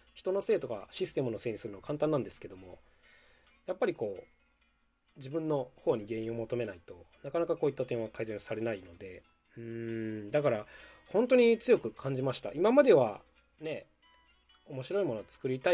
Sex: male